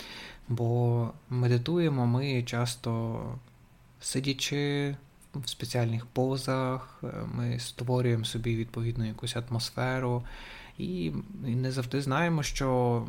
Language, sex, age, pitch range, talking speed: Ukrainian, male, 20-39, 120-135 Hz, 85 wpm